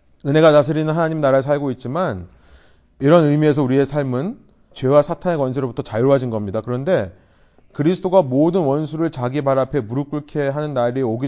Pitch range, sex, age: 105-145 Hz, male, 30-49